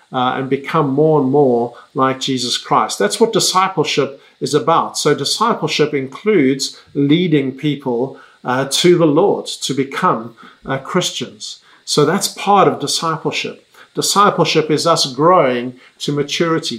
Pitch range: 130-165 Hz